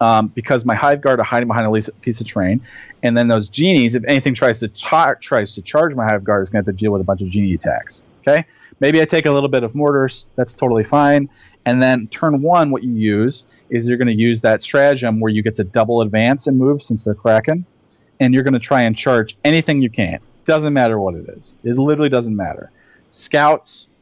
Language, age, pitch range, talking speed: English, 30-49, 110-140 Hz, 230 wpm